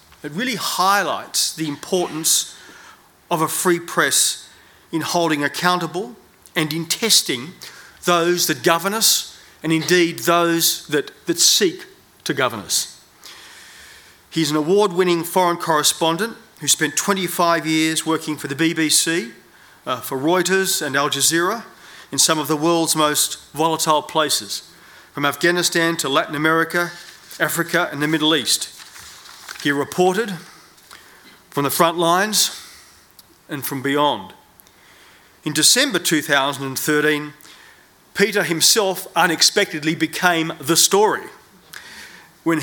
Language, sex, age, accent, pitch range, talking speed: English, male, 40-59, Australian, 150-175 Hz, 120 wpm